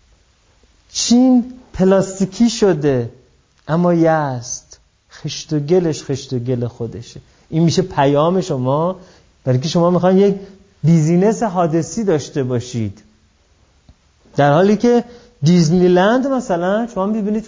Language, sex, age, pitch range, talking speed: Persian, male, 30-49, 130-180 Hz, 110 wpm